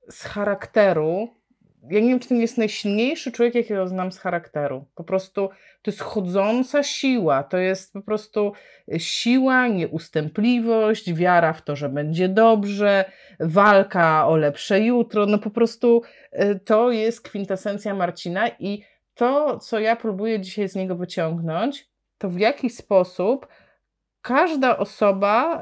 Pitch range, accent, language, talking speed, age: 170-235 Hz, native, Polish, 135 wpm, 30-49